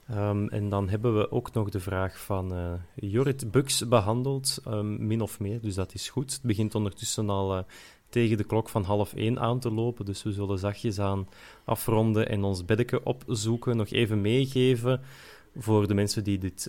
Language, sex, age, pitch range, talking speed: Dutch, male, 20-39, 100-125 Hz, 185 wpm